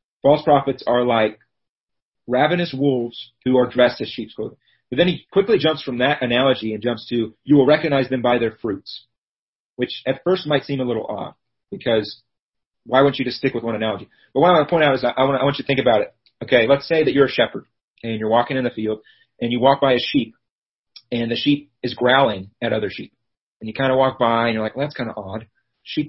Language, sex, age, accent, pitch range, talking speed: English, male, 30-49, American, 115-140 Hz, 245 wpm